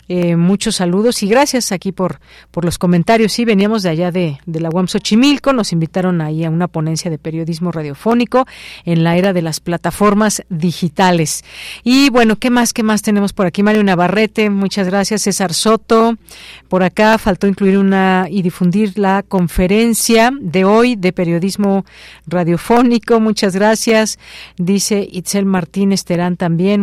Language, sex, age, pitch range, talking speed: Spanish, female, 40-59, 175-220 Hz, 160 wpm